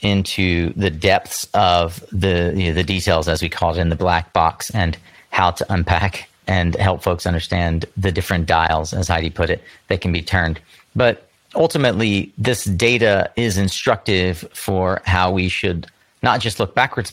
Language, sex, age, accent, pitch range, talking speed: English, male, 30-49, American, 90-105 Hz, 175 wpm